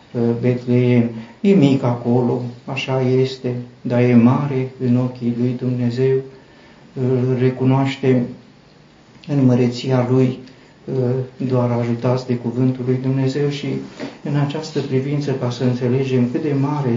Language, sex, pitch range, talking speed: Romanian, male, 120-135 Hz, 120 wpm